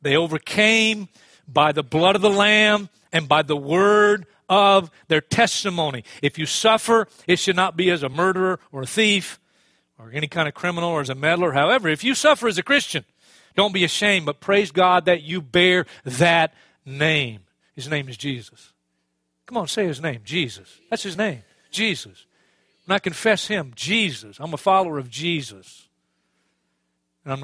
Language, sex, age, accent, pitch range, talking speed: English, male, 40-59, American, 125-200 Hz, 175 wpm